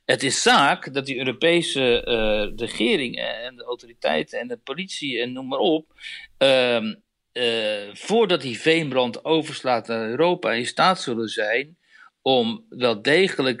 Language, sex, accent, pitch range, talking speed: Dutch, male, Dutch, 115-150 Hz, 145 wpm